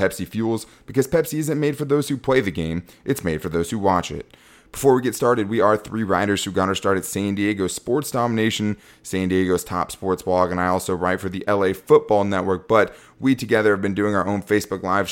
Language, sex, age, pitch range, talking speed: English, male, 20-39, 90-110 Hz, 240 wpm